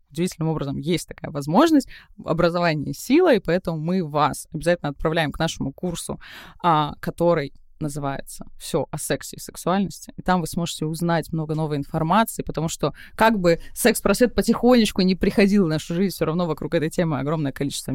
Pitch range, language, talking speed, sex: 155-200 Hz, Russian, 165 wpm, female